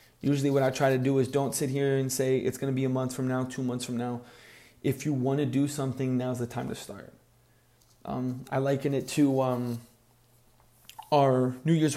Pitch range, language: 125-150 Hz, English